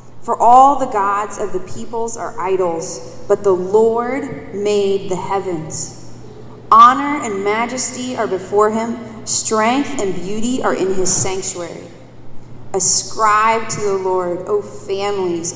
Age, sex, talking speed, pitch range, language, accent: 20-39, female, 130 wpm, 190-235 Hz, English, American